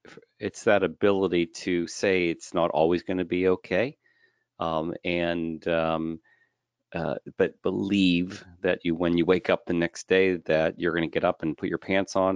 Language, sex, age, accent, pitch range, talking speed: English, male, 40-59, American, 80-95 Hz, 185 wpm